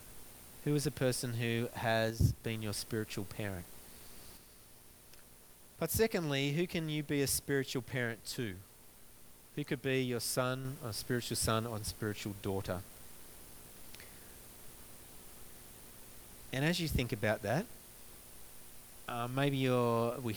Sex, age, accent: male, 30-49, Australian